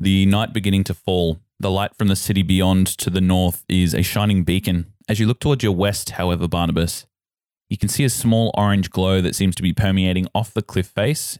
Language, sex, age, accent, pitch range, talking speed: English, male, 20-39, Australian, 85-100 Hz, 220 wpm